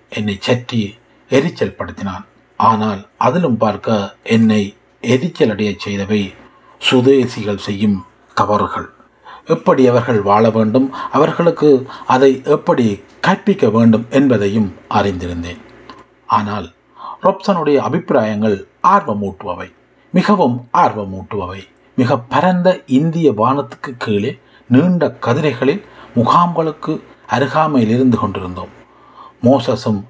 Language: Tamil